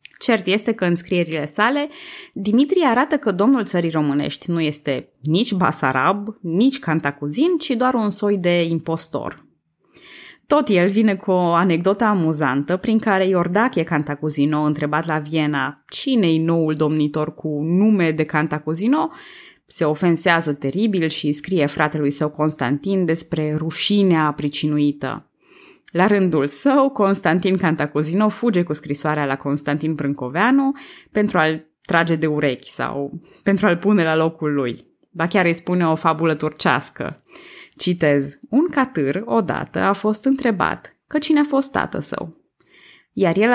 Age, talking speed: 20-39, 140 wpm